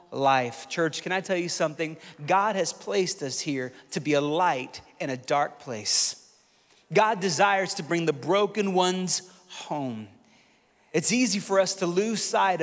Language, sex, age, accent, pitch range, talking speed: English, male, 30-49, American, 155-215 Hz, 160 wpm